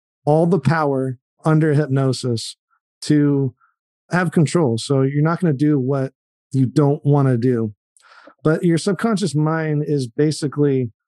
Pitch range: 130-155 Hz